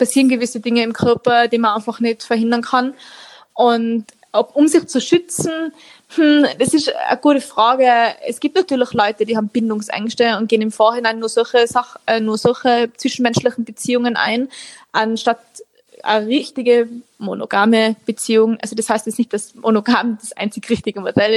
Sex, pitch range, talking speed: female, 215-245 Hz, 170 wpm